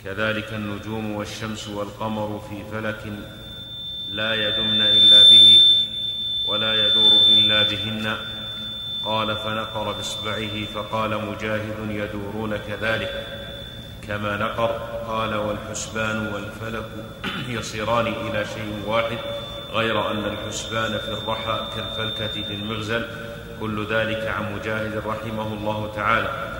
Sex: male